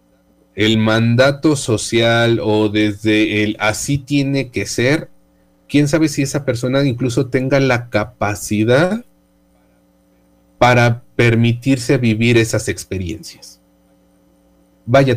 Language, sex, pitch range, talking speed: Spanish, male, 105-135 Hz, 100 wpm